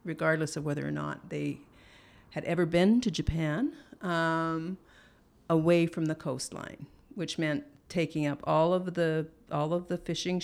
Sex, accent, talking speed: female, American, 155 wpm